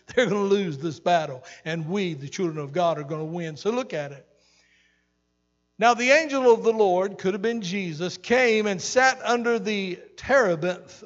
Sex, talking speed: male, 195 wpm